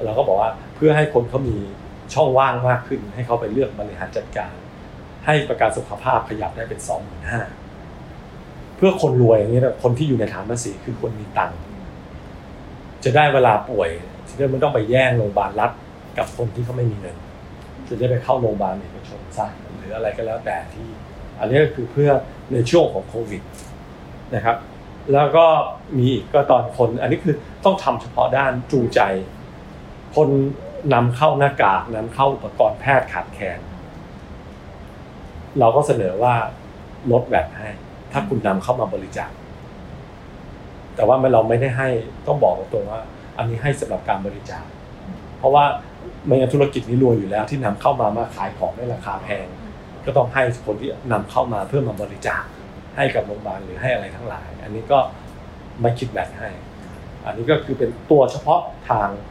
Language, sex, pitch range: English, male, 110-135 Hz